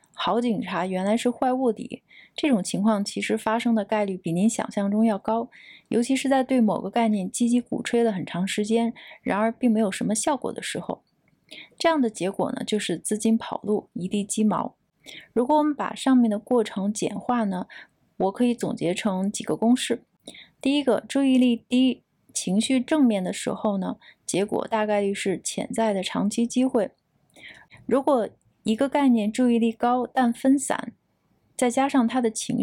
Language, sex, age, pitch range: Chinese, female, 20-39, 205-245 Hz